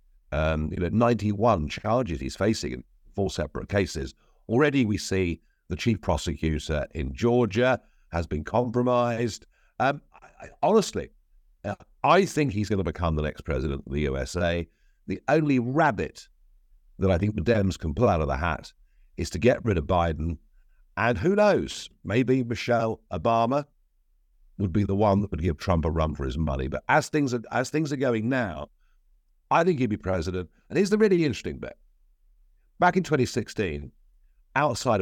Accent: British